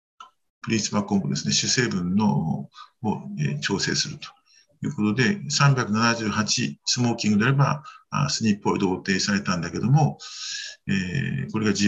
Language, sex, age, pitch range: Japanese, male, 50-69, 115-190 Hz